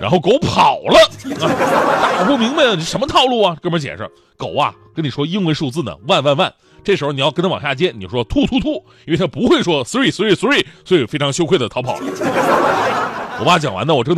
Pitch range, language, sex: 135-220 Hz, Chinese, male